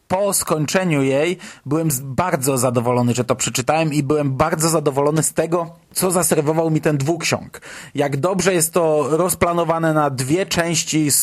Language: Polish